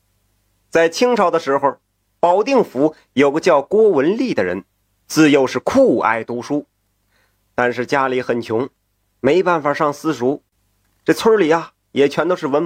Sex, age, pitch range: male, 30-49, 100-165 Hz